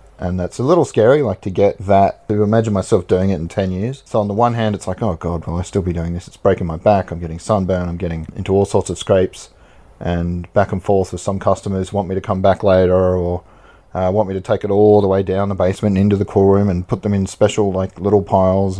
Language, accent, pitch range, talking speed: English, Australian, 90-110 Hz, 270 wpm